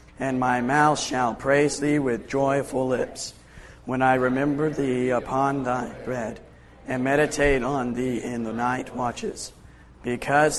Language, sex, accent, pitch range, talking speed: English, male, American, 125-140 Hz, 140 wpm